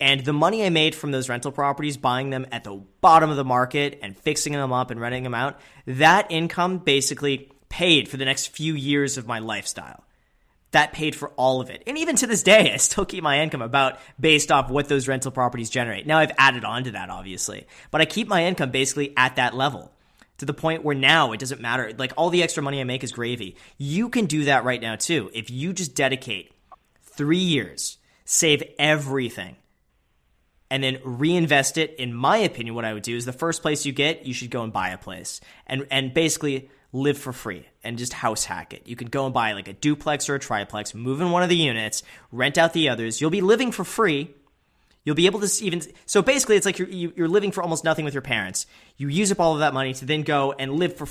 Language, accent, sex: English, American, male